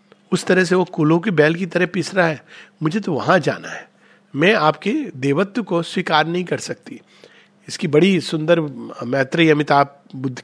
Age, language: 50-69, Hindi